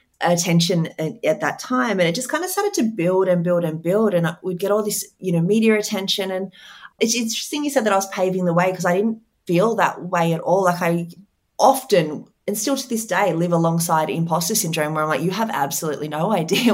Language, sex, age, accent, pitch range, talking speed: English, female, 30-49, Australian, 165-205 Hz, 235 wpm